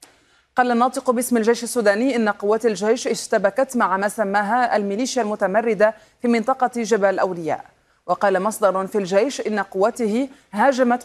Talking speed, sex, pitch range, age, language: 135 wpm, female, 195-230 Hz, 30-49, Arabic